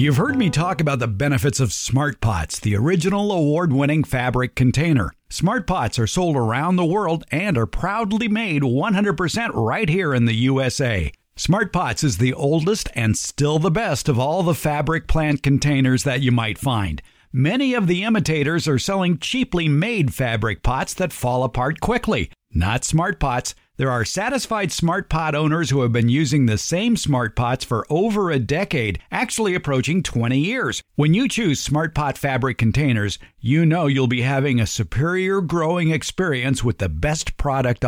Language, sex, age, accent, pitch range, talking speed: English, male, 50-69, American, 125-175 Hz, 175 wpm